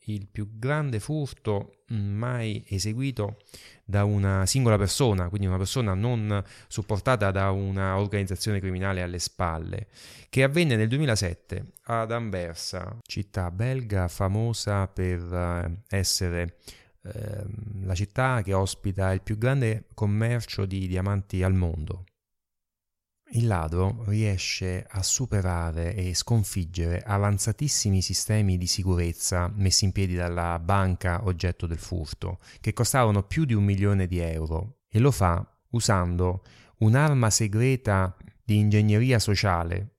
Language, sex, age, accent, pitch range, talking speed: Italian, male, 30-49, native, 95-110 Hz, 120 wpm